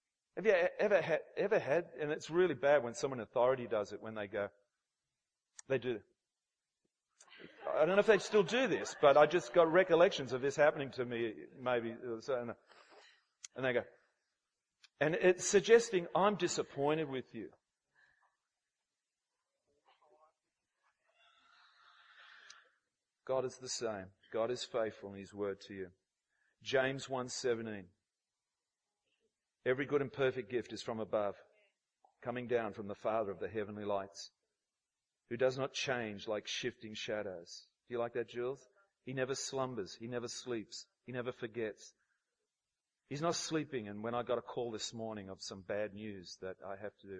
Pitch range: 105-145 Hz